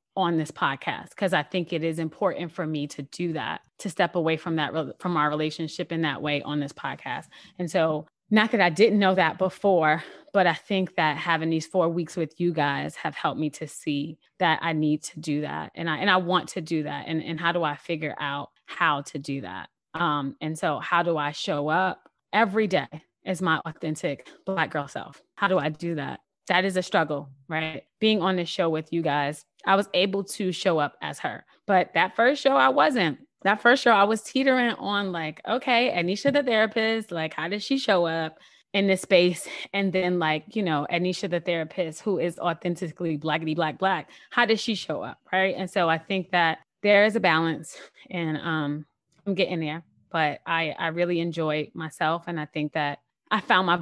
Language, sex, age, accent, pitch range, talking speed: English, female, 20-39, American, 155-190 Hz, 215 wpm